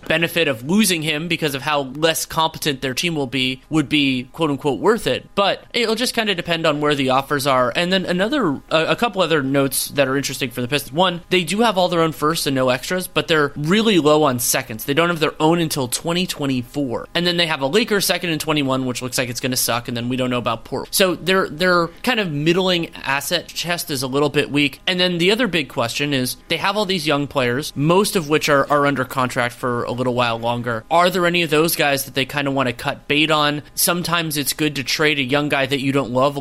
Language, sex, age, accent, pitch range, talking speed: English, male, 30-49, American, 135-170 Hz, 255 wpm